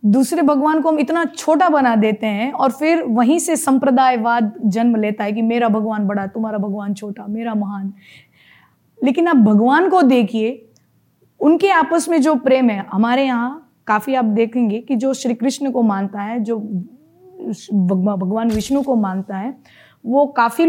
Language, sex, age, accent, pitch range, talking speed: Hindi, female, 20-39, native, 225-285 Hz, 165 wpm